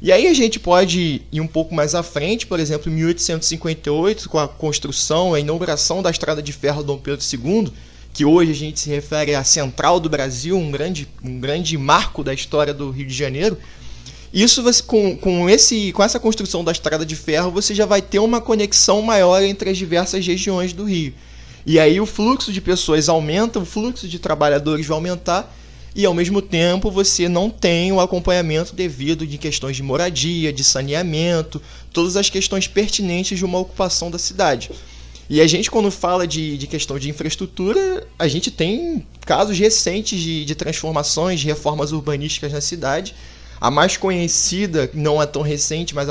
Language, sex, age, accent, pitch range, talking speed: Portuguese, male, 20-39, Brazilian, 150-195 Hz, 185 wpm